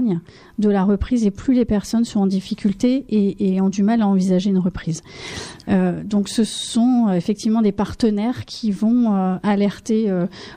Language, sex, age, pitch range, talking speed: French, female, 30-49, 190-225 Hz, 175 wpm